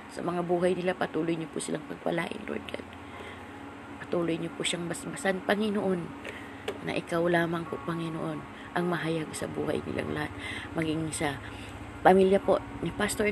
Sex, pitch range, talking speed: female, 160-185 Hz, 155 wpm